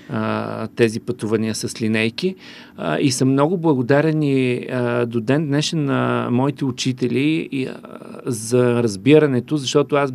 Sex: male